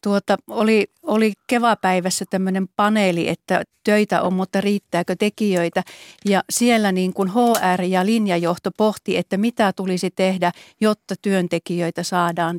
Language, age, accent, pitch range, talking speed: Finnish, 40-59, native, 180-210 Hz, 130 wpm